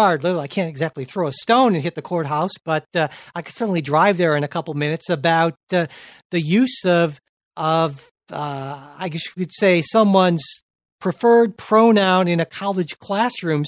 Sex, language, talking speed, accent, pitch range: male, English, 175 wpm, American, 150-190 Hz